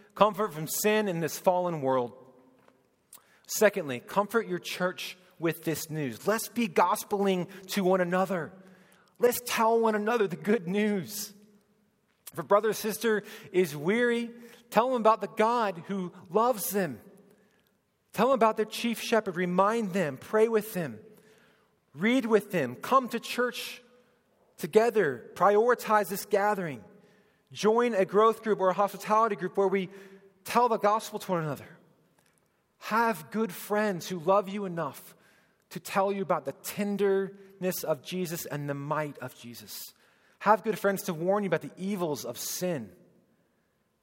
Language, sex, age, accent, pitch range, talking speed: English, male, 40-59, American, 170-215 Hz, 150 wpm